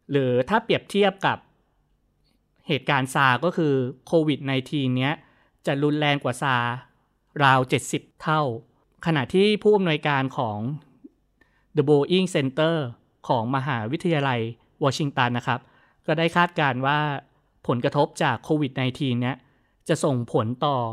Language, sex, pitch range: Thai, male, 125-160 Hz